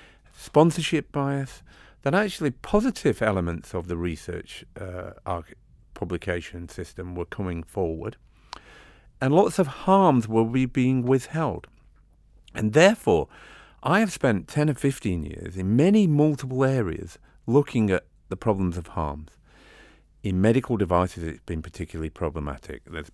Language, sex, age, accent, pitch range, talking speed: English, male, 50-69, British, 85-125 Hz, 130 wpm